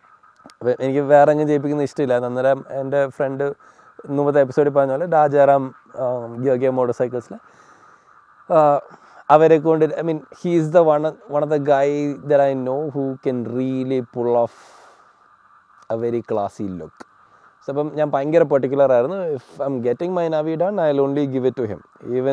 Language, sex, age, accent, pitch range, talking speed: Malayalam, male, 20-39, native, 125-150 Hz, 150 wpm